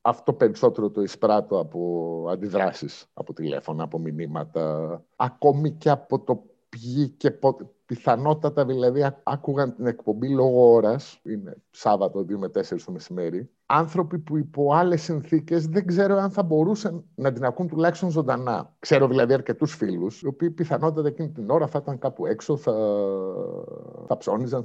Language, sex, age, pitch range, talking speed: Greek, male, 50-69, 125-165 Hz, 155 wpm